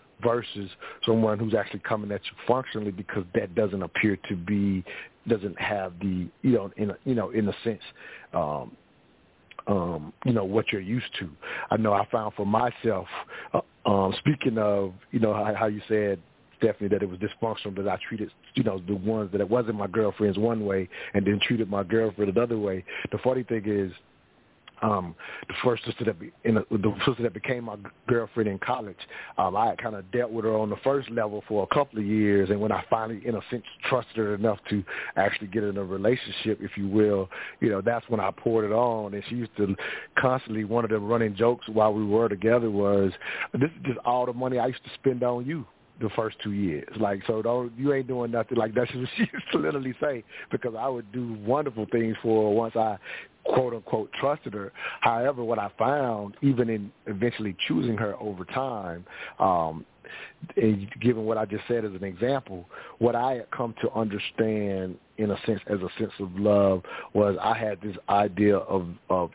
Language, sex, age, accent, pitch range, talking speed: English, male, 50-69, American, 100-120 Hz, 210 wpm